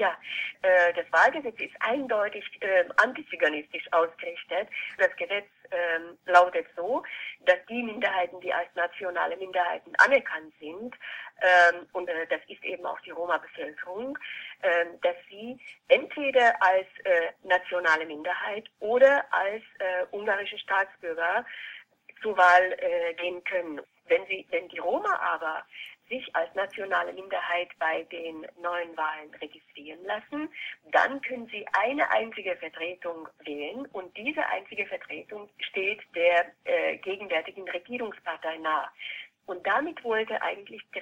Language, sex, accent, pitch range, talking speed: German, female, German, 175-225 Hz, 125 wpm